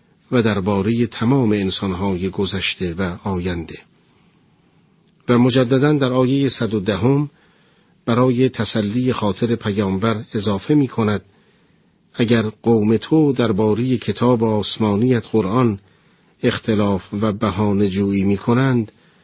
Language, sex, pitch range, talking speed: Persian, male, 100-120 Hz, 95 wpm